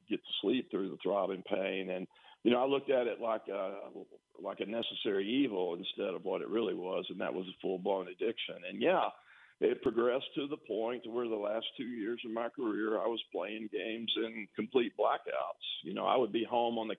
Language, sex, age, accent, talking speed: English, male, 50-69, American, 220 wpm